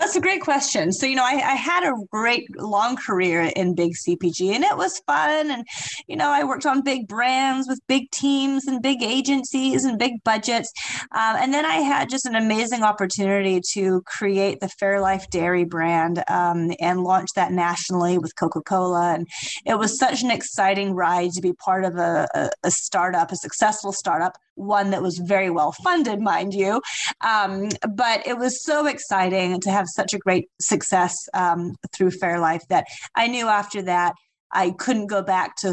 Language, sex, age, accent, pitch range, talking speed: English, female, 30-49, American, 180-235 Hz, 190 wpm